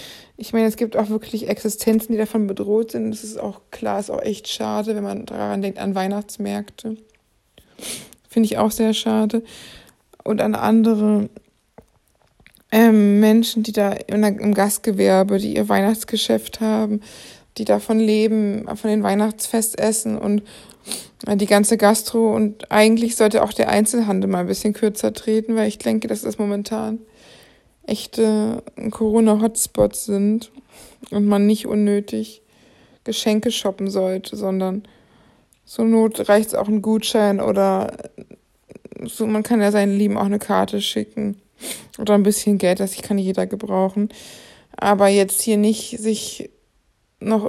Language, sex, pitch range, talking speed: German, female, 205-220 Hz, 145 wpm